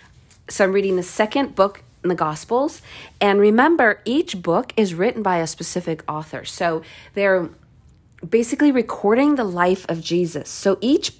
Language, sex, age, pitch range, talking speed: English, female, 40-59, 175-225 Hz, 155 wpm